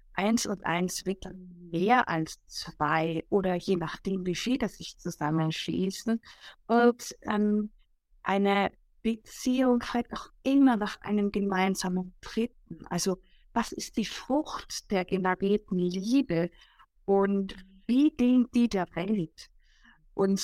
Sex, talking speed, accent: female, 115 wpm, German